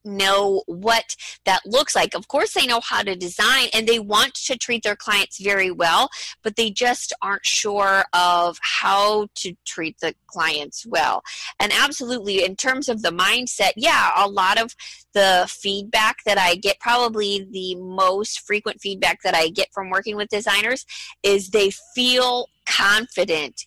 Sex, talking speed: female, 165 wpm